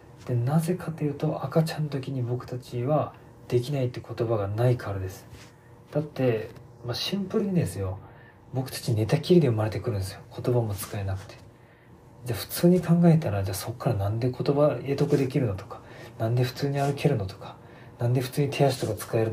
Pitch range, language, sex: 115-160 Hz, Japanese, male